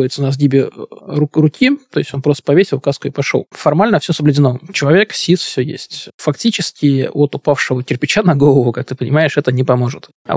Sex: male